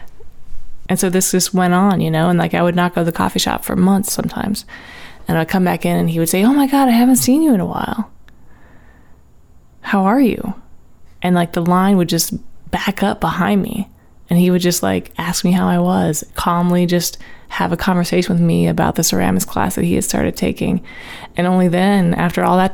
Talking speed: 225 wpm